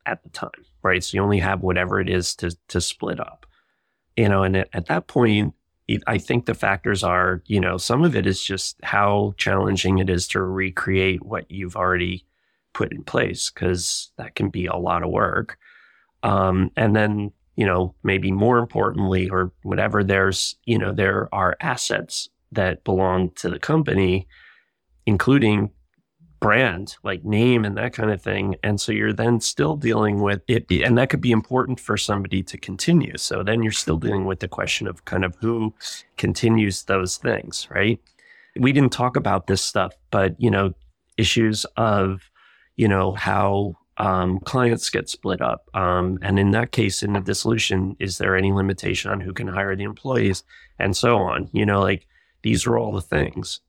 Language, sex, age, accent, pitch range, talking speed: English, male, 30-49, American, 95-110 Hz, 185 wpm